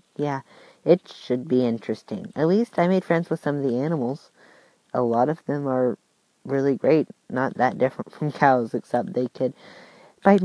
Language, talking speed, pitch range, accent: English, 180 wpm, 125-165 Hz, American